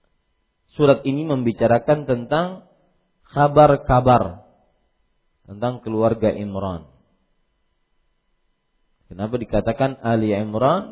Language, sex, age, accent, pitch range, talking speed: Indonesian, male, 40-59, native, 105-135 Hz, 70 wpm